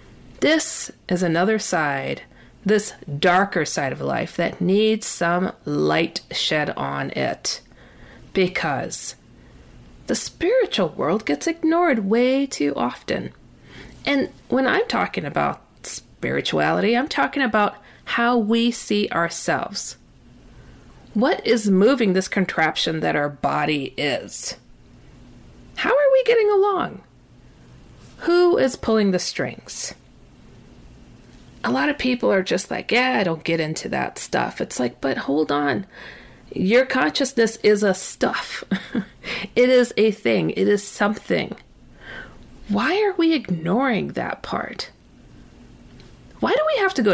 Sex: female